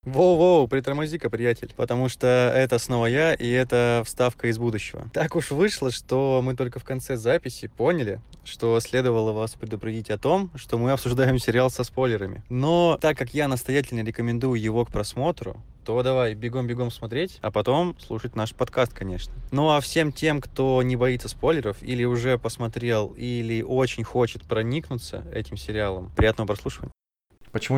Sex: male